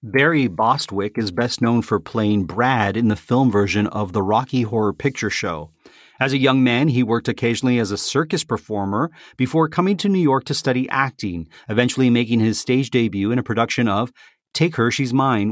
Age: 40-59